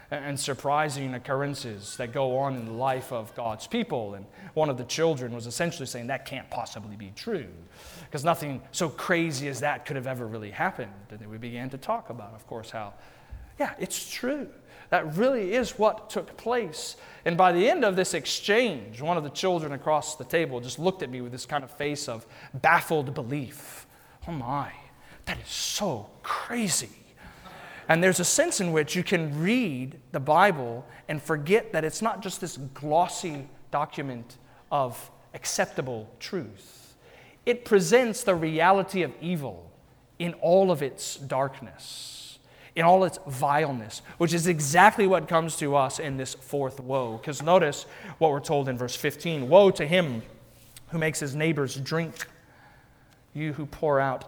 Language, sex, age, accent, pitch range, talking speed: English, male, 30-49, American, 130-170 Hz, 170 wpm